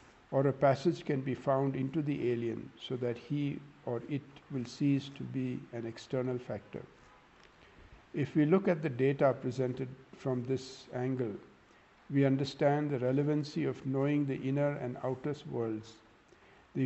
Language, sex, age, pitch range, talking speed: English, male, 60-79, 120-140 Hz, 155 wpm